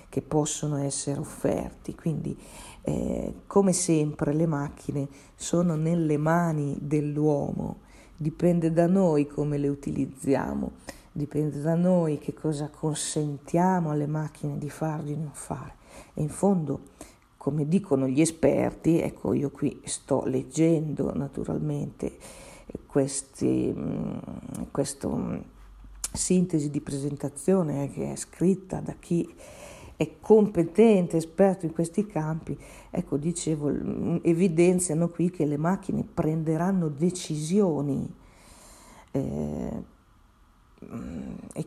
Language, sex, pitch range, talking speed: Italian, female, 145-170 Hz, 100 wpm